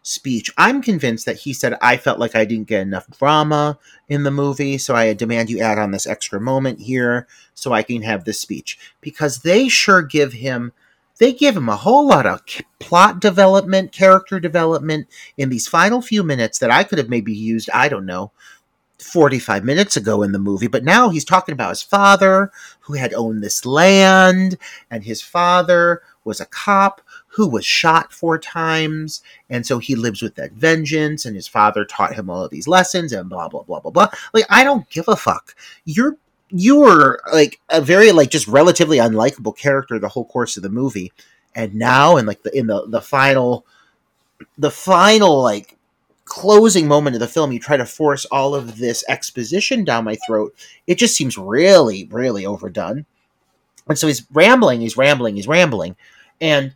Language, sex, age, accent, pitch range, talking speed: English, male, 40-59, American, 120-180 Hz, 190 wpm